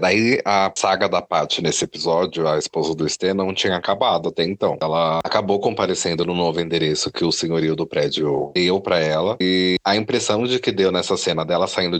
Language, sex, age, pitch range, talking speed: Portuguese, male, 30-49, 90-110 Hz, 200 wpm